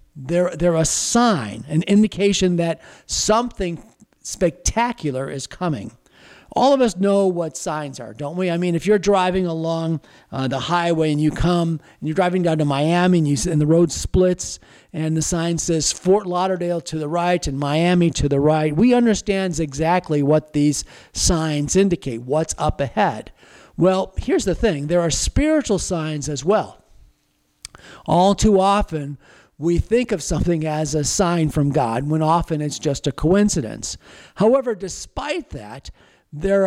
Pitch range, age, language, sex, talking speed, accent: 155-195 Hz, 50-69, English, male, 160 wpm, American